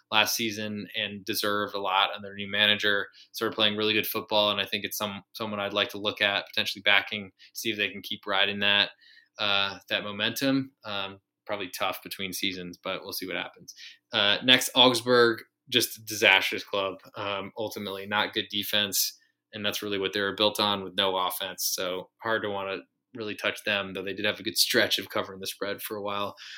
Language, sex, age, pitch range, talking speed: English, male, 20-39, 100-115 Hz, 210 wpm